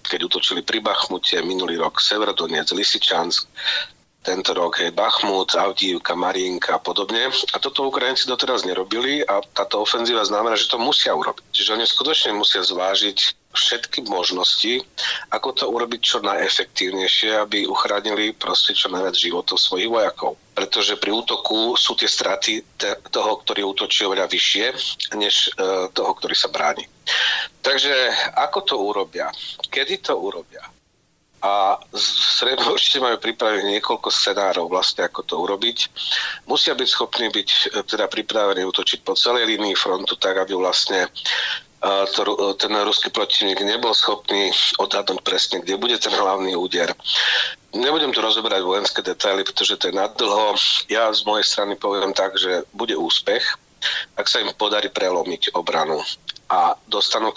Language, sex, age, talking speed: Slovak, male, 40-59, 145 wpm